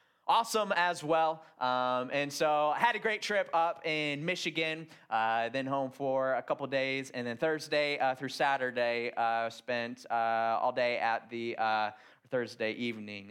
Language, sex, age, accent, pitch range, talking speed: English, male, 20-39, American, 120-160 Hz, 165 wpm